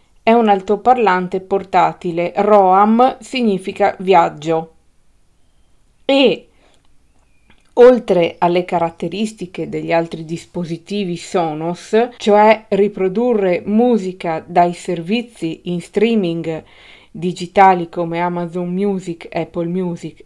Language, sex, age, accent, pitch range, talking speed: Italian, female, 40-59, native, 175-215 Hz, 85 wpm